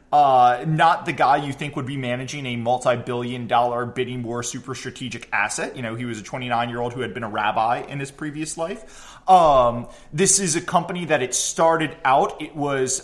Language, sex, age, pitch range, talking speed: English, male, 20-39, 125-160 Hz, 200 wpm